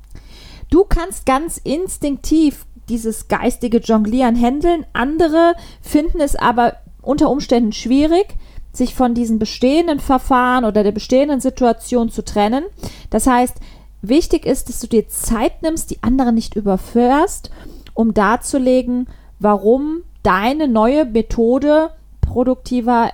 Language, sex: German, female